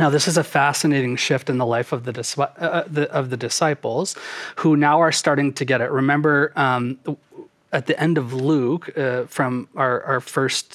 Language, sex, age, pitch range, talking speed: English, male, 30-49, 125-150 Hz, 175 wpm